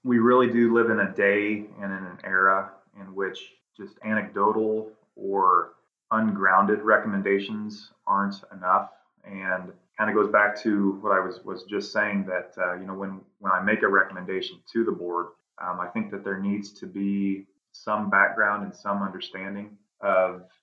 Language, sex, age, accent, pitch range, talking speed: English, male, 20-39, American, 95-105 Hz, 170 wpm